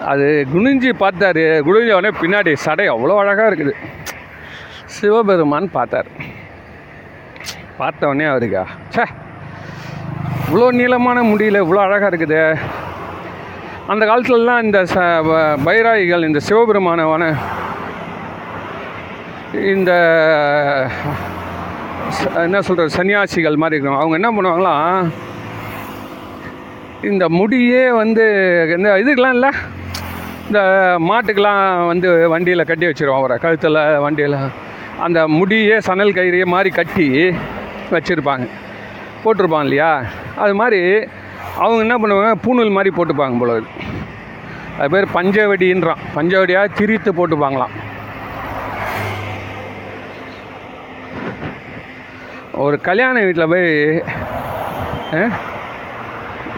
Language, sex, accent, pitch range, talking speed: Tamil, male, native, 145-200 Hz, 85 wpm